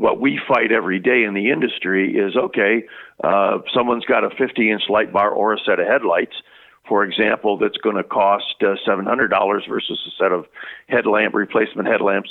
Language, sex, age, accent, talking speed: English, male, 50-69, American, 175 wpm